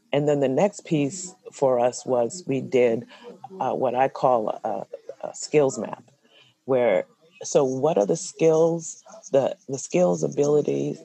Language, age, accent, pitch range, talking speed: English, 40-59, American, 125-170 Hz, 150 wpm